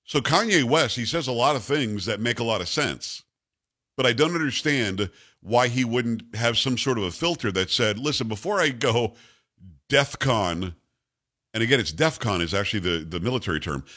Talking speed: 195 wpm